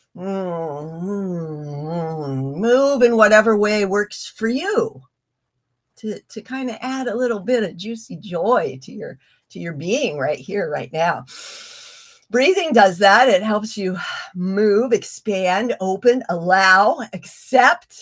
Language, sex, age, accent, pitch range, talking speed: English, female, 50-69, American, 180-250 Hz, 125 wpm